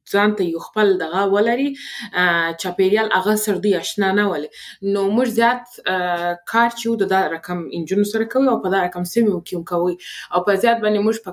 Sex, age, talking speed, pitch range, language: female, 20-39, 170 wpm, 175-215 Hz, Persian